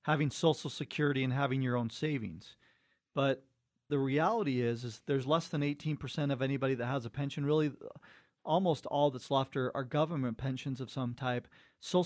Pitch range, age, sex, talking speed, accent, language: 130-155 Hz, 40-59, male, 180 wpm, American, English